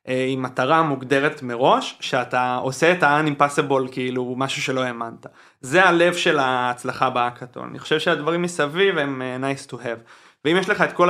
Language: Hebrew